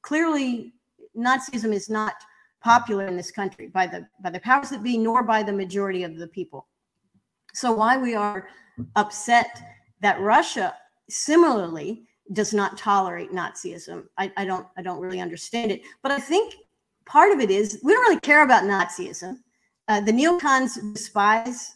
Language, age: English, 40-59